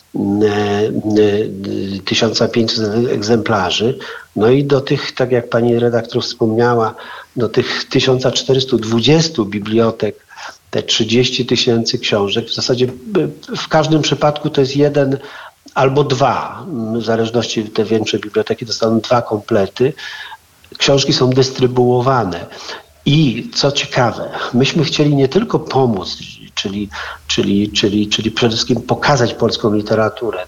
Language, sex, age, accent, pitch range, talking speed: Polish, male, 50-69, native, 115-135 Hz, 110 wpm